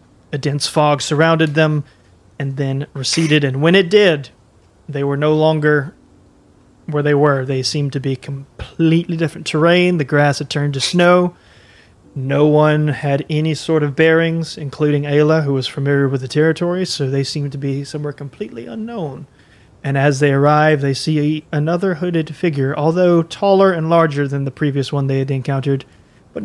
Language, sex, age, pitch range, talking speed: English, male, 30-49, 135-155 Hz, 170 wpm